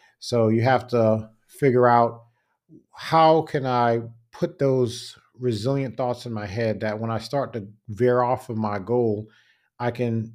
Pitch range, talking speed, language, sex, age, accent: 110-125 Hz, 160 wpm, English, male, 40-59, American